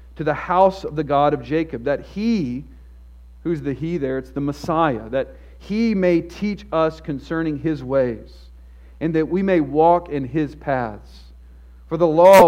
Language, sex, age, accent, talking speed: English, male, 50-69, American, 175 wpm